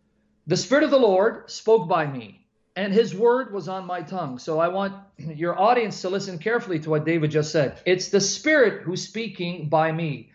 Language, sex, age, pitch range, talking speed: English, male, 40-59, 165-220 Hz, 205 wpm